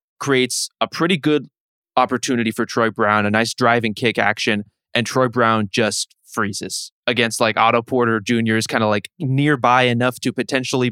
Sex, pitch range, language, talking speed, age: male, 110-125 Hz, English, 170 wpm, 20-39